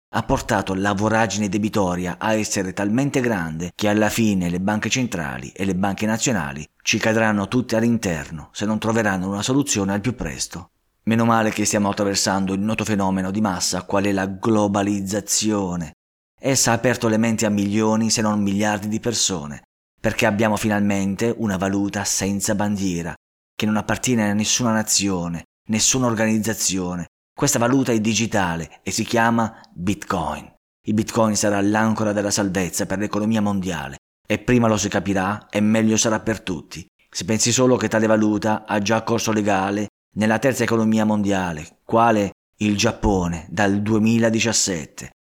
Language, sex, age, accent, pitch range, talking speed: Italian, male, 30-49, native, 100-115 Hz, 155 wpm